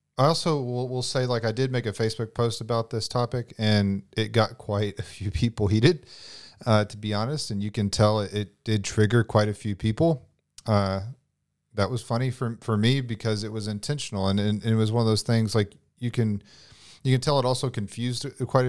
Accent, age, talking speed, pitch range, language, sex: American, 40-59, 215 wpm, 105-125 Hz, English, male